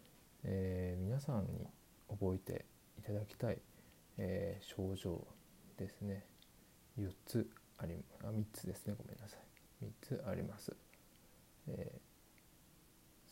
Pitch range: 100-115 Hz